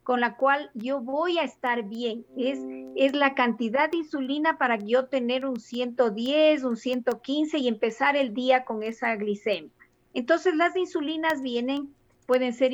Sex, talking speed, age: female, 160 wpm, 40-59